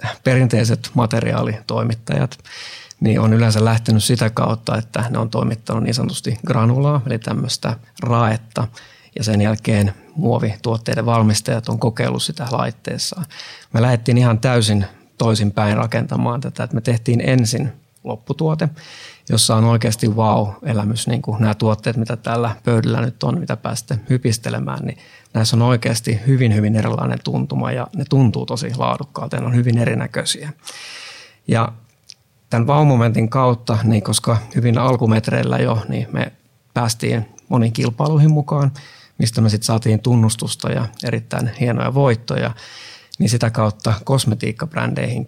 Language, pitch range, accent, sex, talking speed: Finnish, 110-125 Hz, native, male, 135 wpm